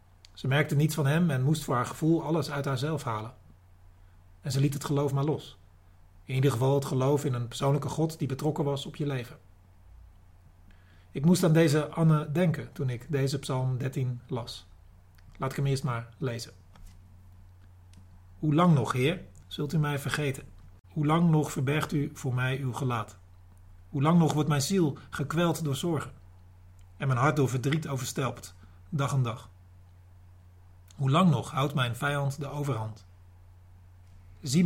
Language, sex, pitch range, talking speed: Dutch, male, 90-145 Hz, 170 wpm